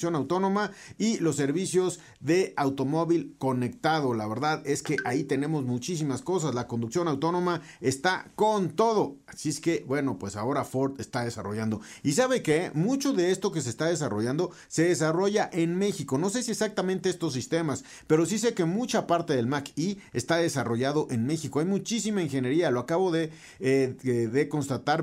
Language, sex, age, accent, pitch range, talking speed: Spanish, male, 40-59, Mexican, 125-165 Hz, 175 wpm